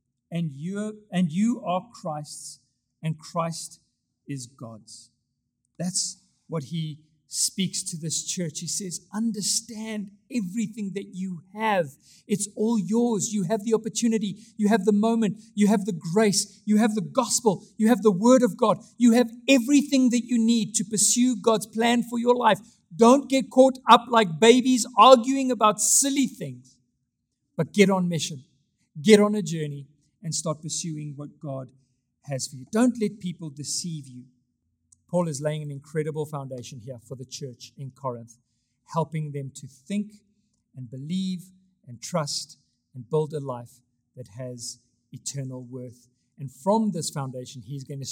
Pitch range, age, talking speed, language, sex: 130-210 Hz, 50-69, 160 wpm, English, male